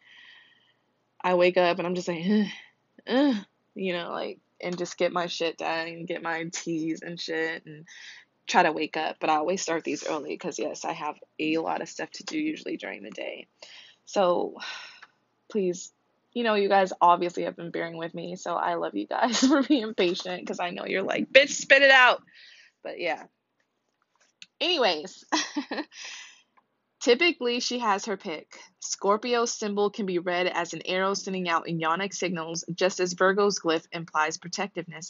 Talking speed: 180 wpm